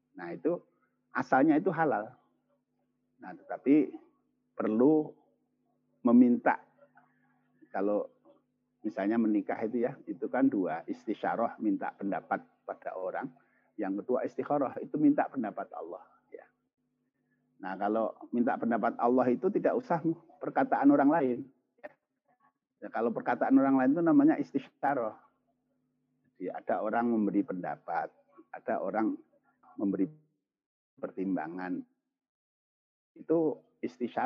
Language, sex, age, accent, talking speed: Indonesian, male, 50-69, native, 105 wpm